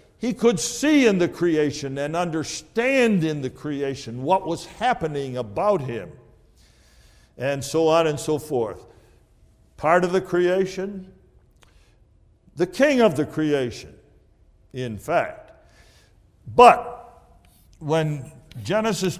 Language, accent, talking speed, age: English, American, 115 wpm, 60-79